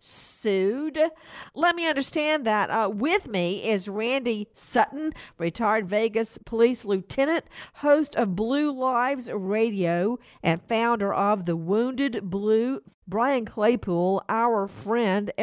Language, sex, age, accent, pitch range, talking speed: English, female, 50-69, American, 195-265 Hz, 115 wpm